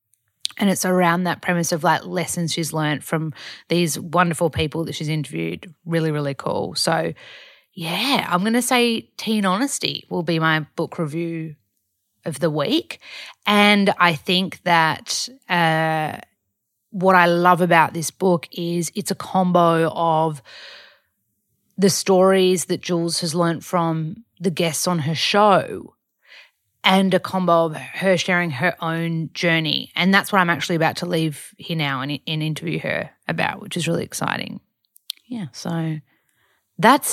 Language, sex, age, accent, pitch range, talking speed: English, female, 30-49, Australian, 160-190 Hz, 155 wpm